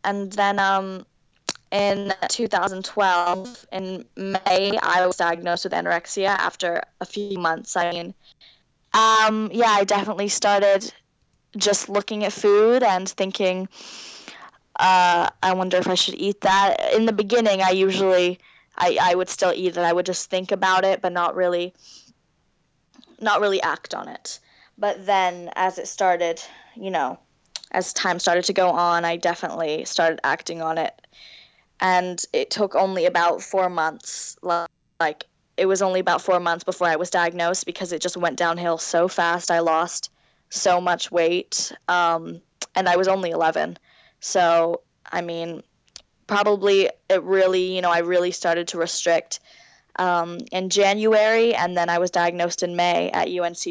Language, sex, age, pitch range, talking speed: English, female, 10-29, 175-200 Hz, 160 wpm